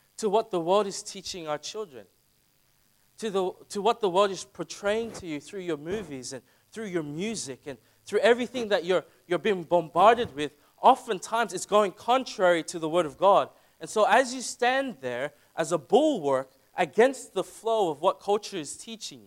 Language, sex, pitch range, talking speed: English, male, 145-200 Hz, 185 wpm